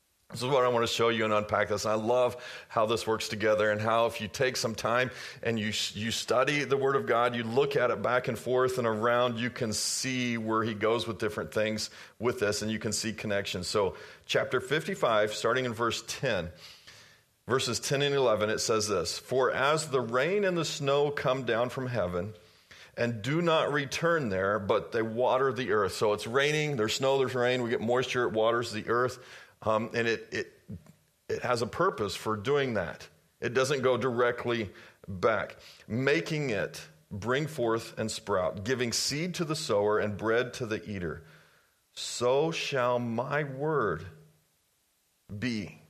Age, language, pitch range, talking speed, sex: 40-59, English, 110-130 Hz, 185 wpm, male